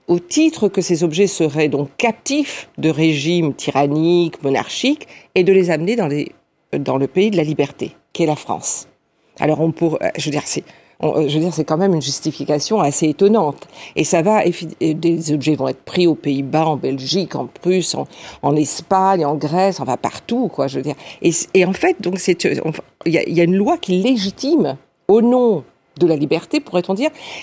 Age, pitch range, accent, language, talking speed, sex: 50-69, 150-205 Hz, French, French, 210 wpm, female